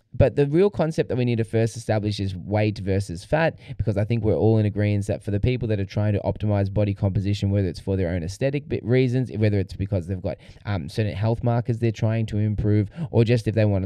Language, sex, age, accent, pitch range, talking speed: English, male, 10-29, Australian, 100-115 Hz, 250 wpm